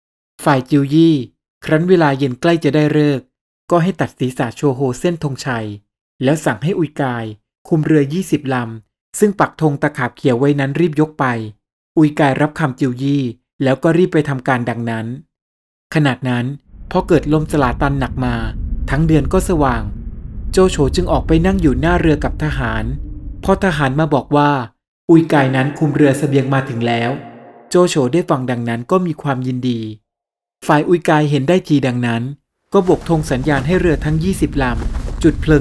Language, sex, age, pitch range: Thai, male, 20-39, 130-165 Hz